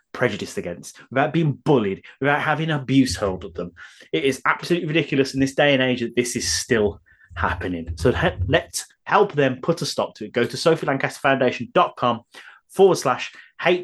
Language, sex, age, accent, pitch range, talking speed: English, male, 30-49, British, 125-175 Hz, 175 wpm